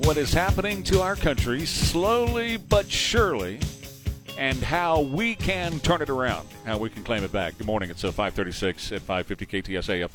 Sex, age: male, 40-59